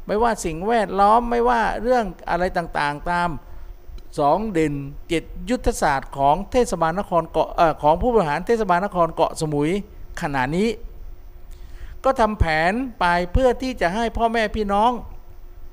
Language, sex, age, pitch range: Thai, male, 60-79, 150-220 Hz